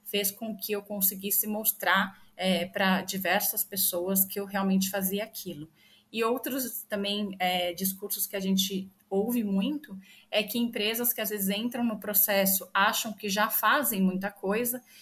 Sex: female